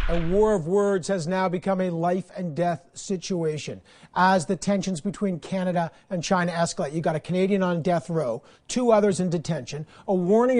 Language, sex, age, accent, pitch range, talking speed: English, male, 50-69, American, 175-205 Hz, 185 wpm